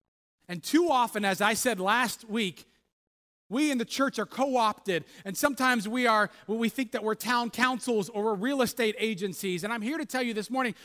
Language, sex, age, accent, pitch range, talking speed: English, male, 40-59, American, 200-260 Hz, 205 wpm